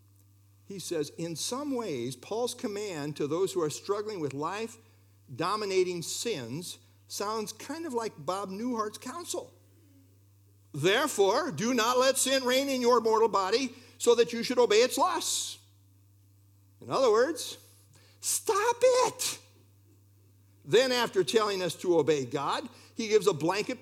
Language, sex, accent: English, male, American